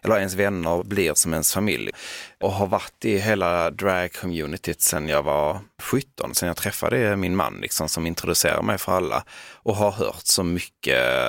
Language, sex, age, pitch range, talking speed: Swedish, male, 30-49, 85-105 Hz, 175 wpm